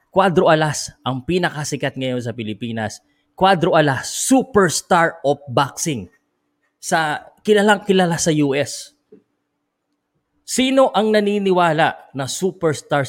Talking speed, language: 100 wpm, Filipino